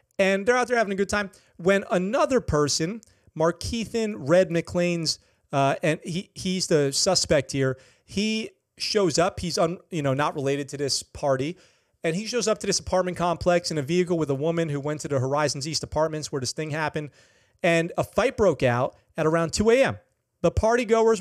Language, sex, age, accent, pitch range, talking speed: English, male, 30-49, American, 150-190 Hz, 200 wpm